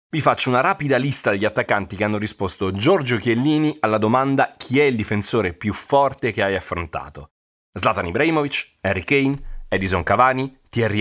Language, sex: Italian, male